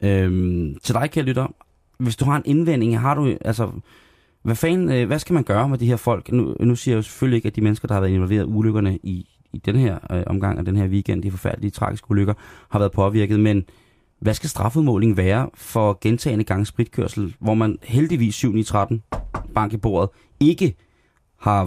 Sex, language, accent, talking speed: male, Danish, native, 205 wpm